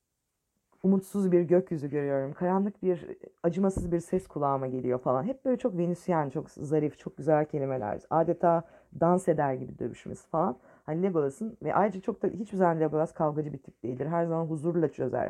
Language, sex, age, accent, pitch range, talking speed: Turkish, female, 30-49, native, 150-195 Hz, 175 wpm